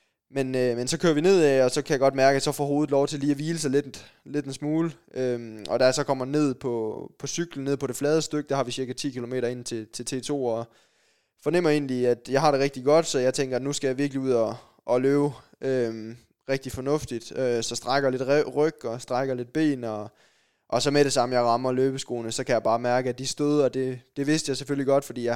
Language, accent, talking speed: Danish, native, 260 wpm